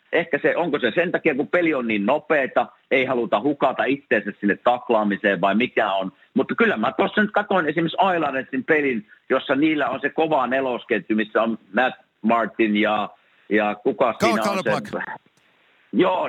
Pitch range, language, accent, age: 110-155 Hz, Finnish, native, 50-69